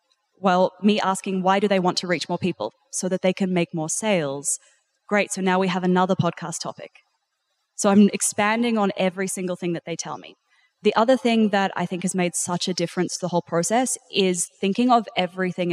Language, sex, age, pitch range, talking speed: English, female, 20-39, 180-215 Hz, 215 wpm